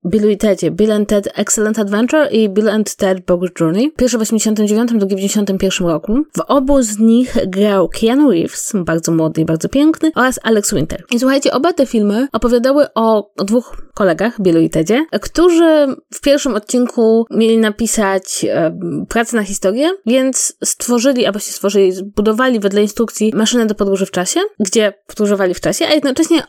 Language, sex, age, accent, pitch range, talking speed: Polish, female, 20-39, native, 200-260 Hz, 170 wpm